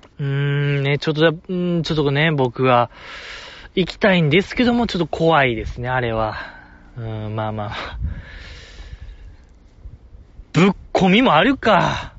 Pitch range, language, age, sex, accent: 110-175 Hz, Japanese, 20-39, male, native